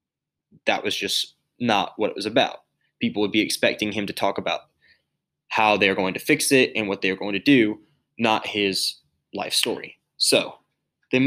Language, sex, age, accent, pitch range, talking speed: English, male, 20-39, American, 105-135 Hz, 180 wpm